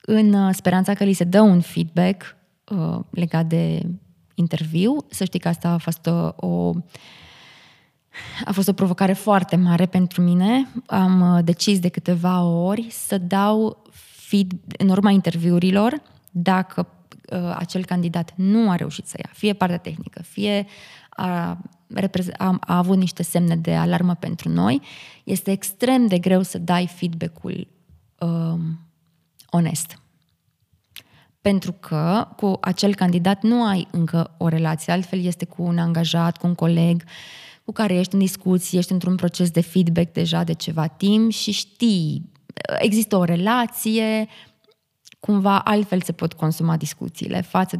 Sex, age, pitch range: female, 20-39, 170-200 Hz